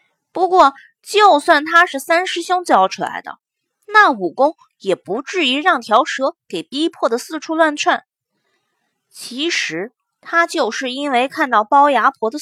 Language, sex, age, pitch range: Chinese, female, 20-39, 265-360 Hz